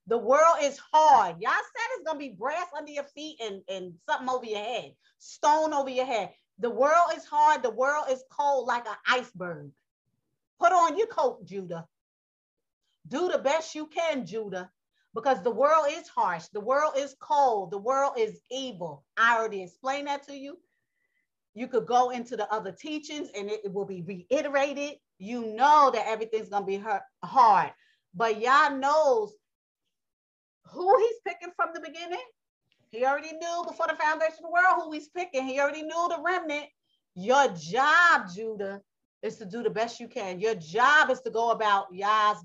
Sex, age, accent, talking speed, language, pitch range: female, 40-59, American, 180 wpm, English, 220-310 Hz